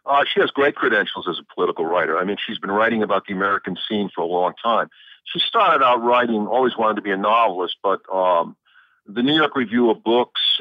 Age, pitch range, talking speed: 50-69, 100-130 Hz, 225 wpm